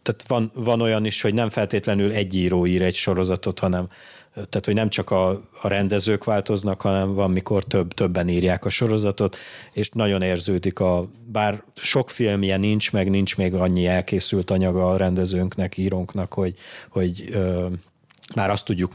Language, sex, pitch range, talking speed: Hungarian, male, 95-110 Hz, 160 wpm